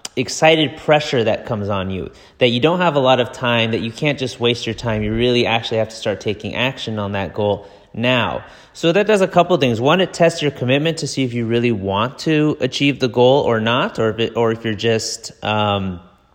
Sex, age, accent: male, 30-49, American